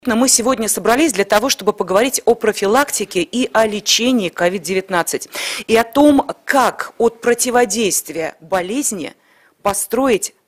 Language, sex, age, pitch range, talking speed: Russian, female, 30-49, 190-250 Hz, 120 wpm